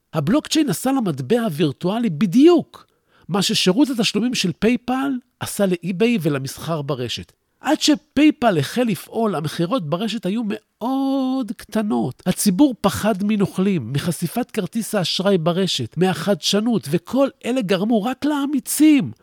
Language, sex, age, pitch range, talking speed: Hebrew, male, 50-69, 170-245 Hz, 115 wpm